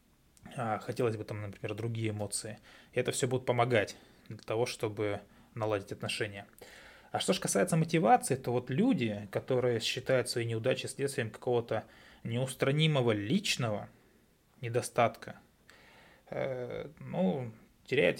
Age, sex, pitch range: 20-39, male, 110-125 Hz